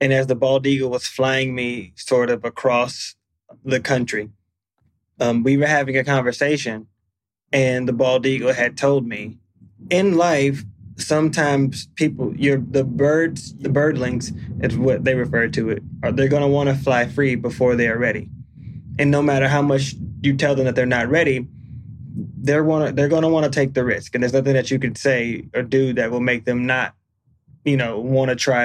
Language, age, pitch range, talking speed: English, 20-39, 120-140 Hz, 195 wpm